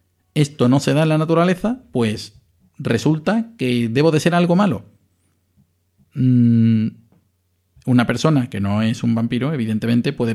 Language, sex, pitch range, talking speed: Spanish, male, 110-150 Hz, 140 wpm